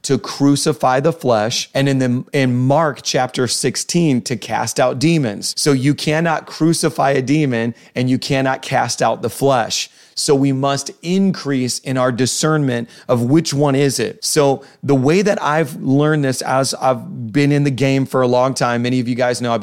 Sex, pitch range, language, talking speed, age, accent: male, 125-150 Hz, English, 195 wpm, 30-49, American